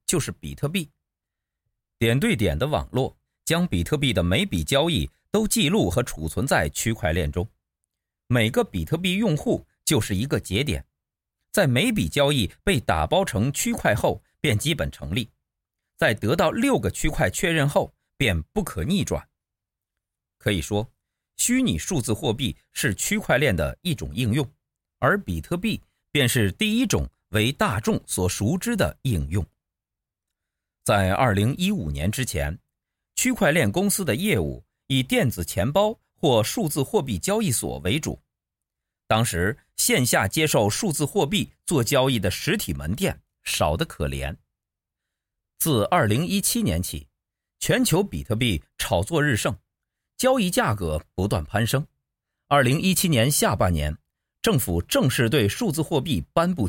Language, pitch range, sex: Chinese, 95-155 Hz, male